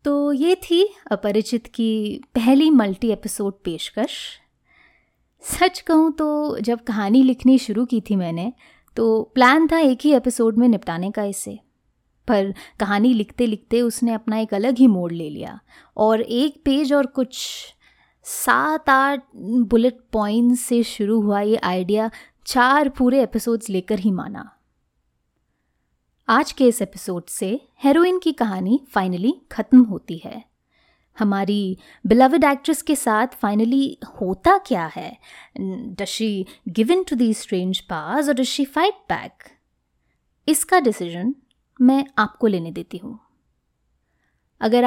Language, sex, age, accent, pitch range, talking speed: Hindi, female, 20-39, native, 200-265 Hz, 135 wpm